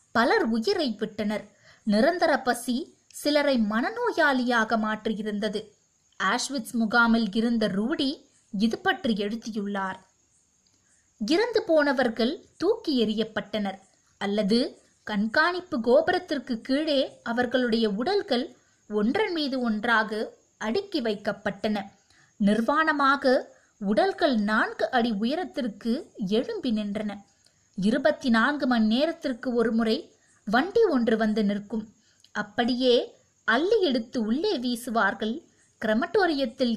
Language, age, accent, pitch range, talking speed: Tamil, 20-39, native, 220-290 Hz, 85 wpm